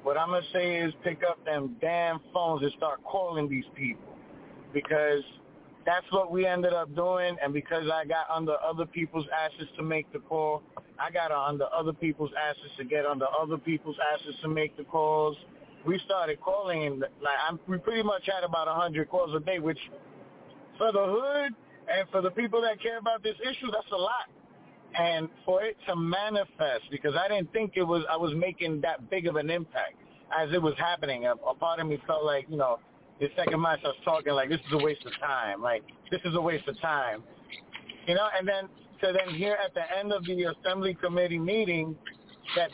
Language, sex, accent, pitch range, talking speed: English, male, American, 155-195 Hz, 210 wpm